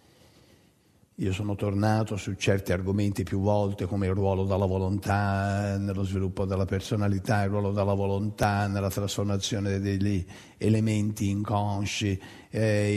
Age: 50-69